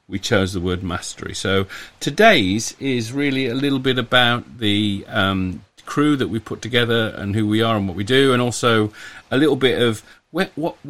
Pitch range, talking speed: 100-125 Hz, 195 wpm